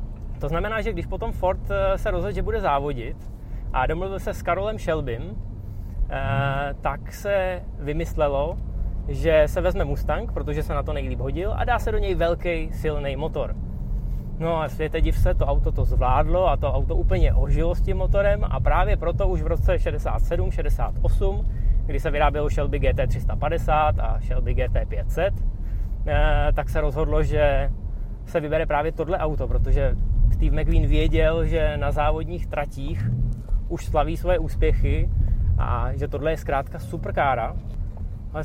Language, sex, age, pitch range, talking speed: Czech, male, 20-39, 95-150 Hz, 155 wpm